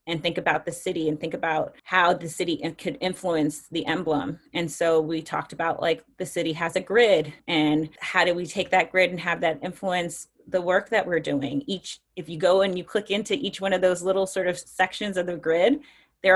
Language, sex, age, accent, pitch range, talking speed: English, female, 30-49, American, 170-205 Hz, 230 wpm